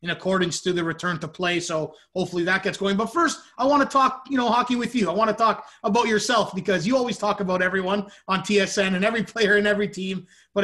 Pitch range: 180-220 Hz